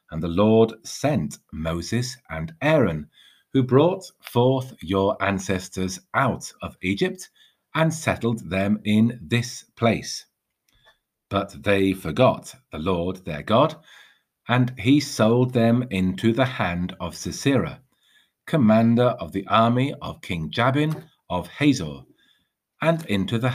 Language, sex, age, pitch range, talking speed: English, male, 50-69, 95-125 Hz, 125 wpm